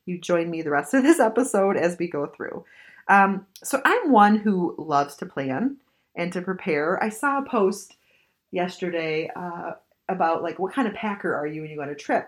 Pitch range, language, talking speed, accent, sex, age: 165-235 Hz, English, 210 wpm, American, female, 30-49